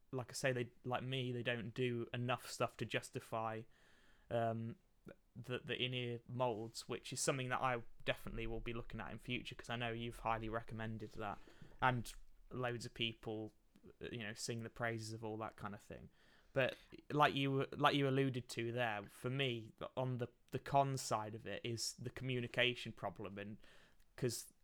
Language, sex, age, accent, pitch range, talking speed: English, male, 20-39, British, 115-125 Hz, 185 wpm